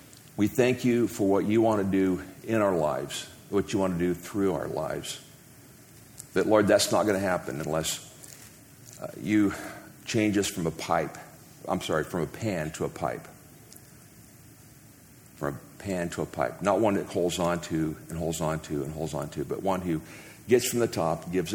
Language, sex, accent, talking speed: English, male, American, 200 wpm